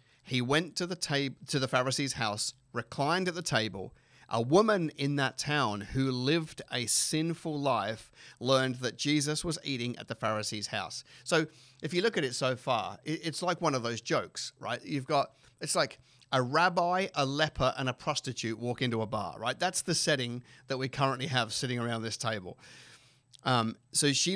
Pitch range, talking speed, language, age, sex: 115-150 Hz, 190 wpm, English, 40-59, male